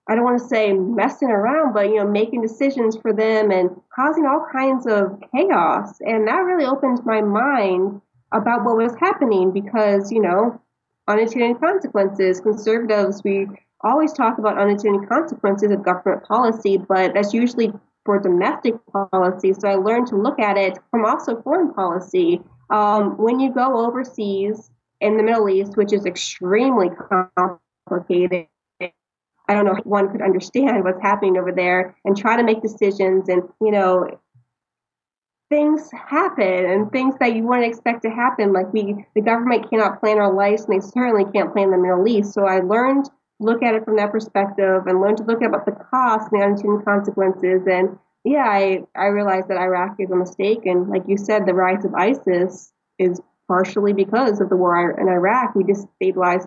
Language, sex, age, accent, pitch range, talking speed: English, female, 30-49, American, 190-230 Hz, 180 wpm